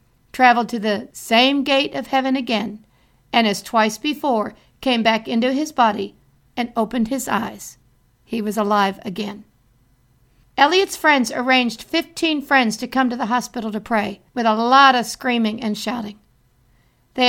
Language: English